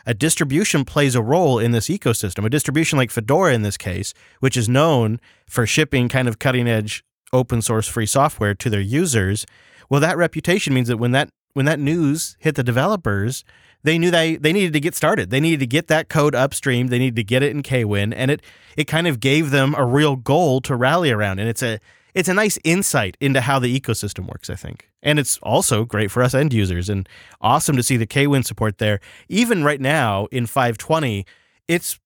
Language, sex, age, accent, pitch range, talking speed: English, male, 30-49, American, 110-150 Hz, 215 wpm